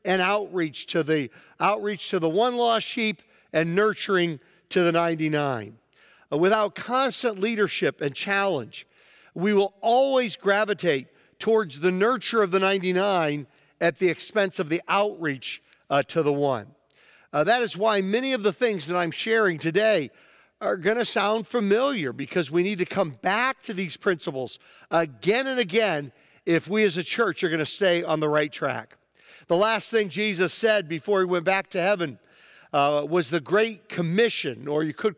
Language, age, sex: English, 50-69, male